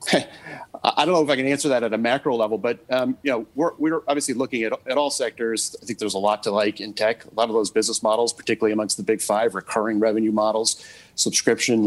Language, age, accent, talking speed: English, 40-59, American, 245 wpm